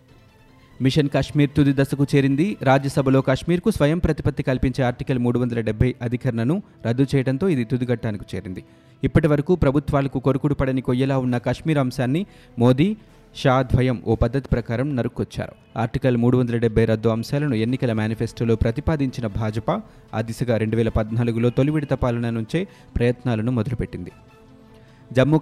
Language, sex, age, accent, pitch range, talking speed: Telugu, male, 30-49, native, 115-140 Hz, 110 wpm